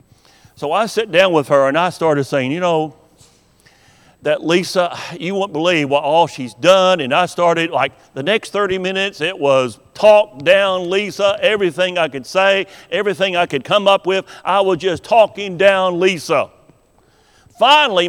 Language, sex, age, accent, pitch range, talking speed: English, male, 50-69, American, 130-190 Hz, 170 wpm